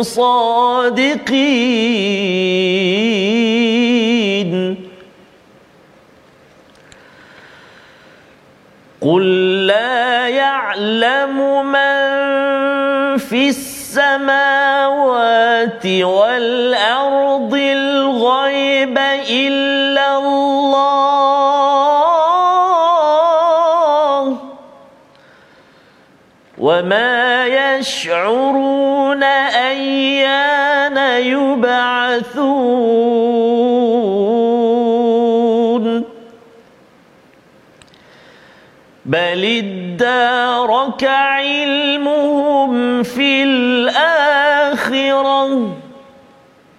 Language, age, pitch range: Malayalam, 40-59, 235-275 Hz